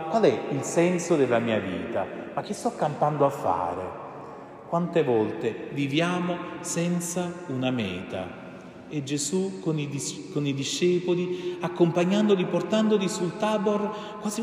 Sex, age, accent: male, 30-49, native